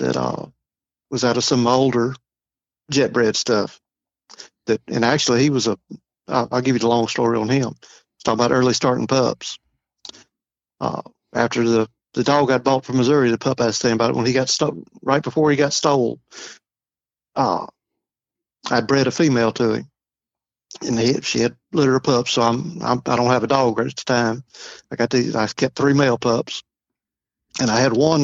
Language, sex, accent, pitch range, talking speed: English, male, American, 120-140 Hz, 195 wpm